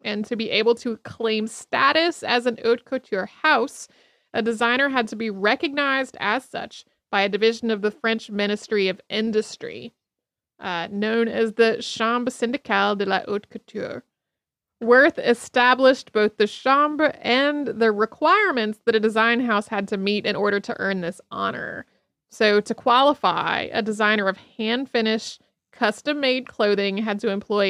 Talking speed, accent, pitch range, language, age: 155 wpm, American, 210-245 Hz, English, 30-49